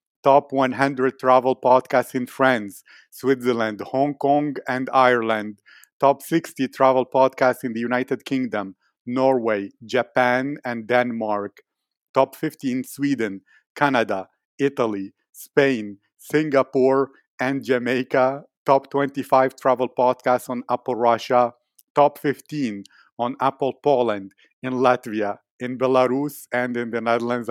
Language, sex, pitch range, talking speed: English, male, 125-140 Hz, 115 wpm